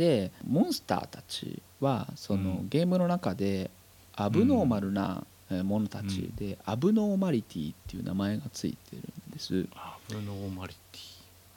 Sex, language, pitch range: male, Japanese, 95-135 Hz